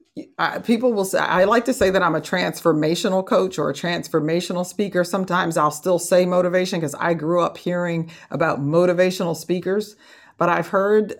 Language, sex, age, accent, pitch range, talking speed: English, female, 50-69, American, 160-190 Hz, 170 wpm